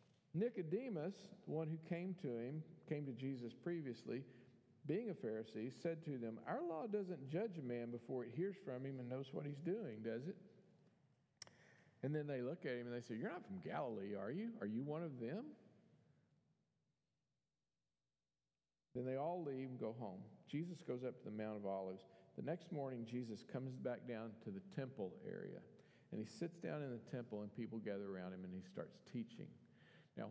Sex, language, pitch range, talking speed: male, English, 110-155 Hz, 195 wpm